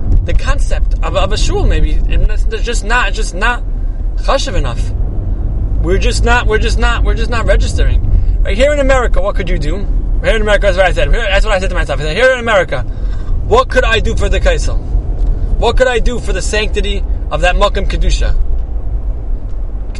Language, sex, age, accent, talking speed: English, male, 20-39, American, 220 wpm